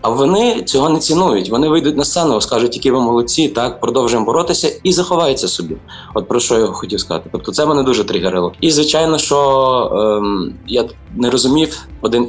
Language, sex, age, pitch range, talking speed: Ukrainian, male, 20-39, 110-160 Hz, 185 wpm